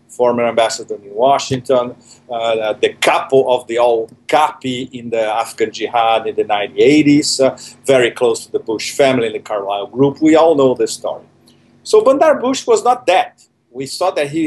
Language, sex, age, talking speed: English, male, 50-69, 180 wpm